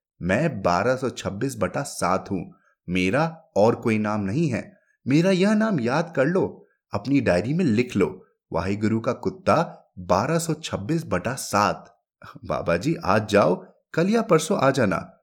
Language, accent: English, Indian